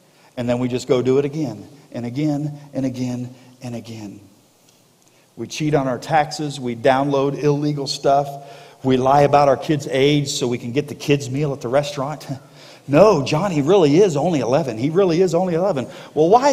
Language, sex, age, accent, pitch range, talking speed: English, male, 50-69, American, 135-190 Hz, 190 wpm